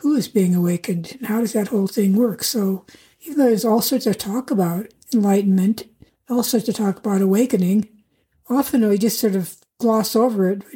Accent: American